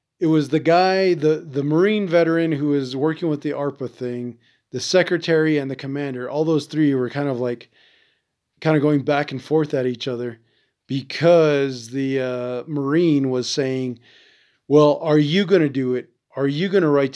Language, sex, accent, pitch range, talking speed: English, male, American, 130-160 Hz, 190 wpm